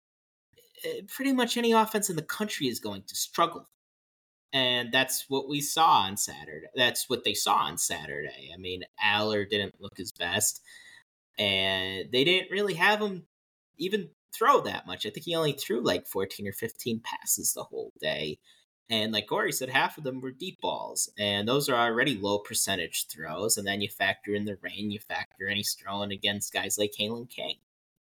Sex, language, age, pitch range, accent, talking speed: male, English, 30-49, 100-160 Hz, American, 185 wpm